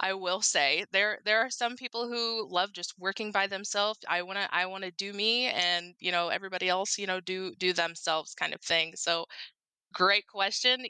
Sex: female